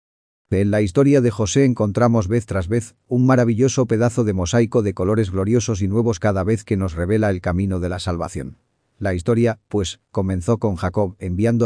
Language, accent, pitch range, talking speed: Spanish, Spanish, 95-115 Hz, 185 wpm